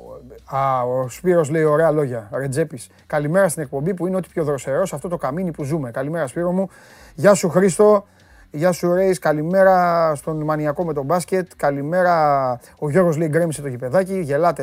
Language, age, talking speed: Greek, 30-49, 175 wpm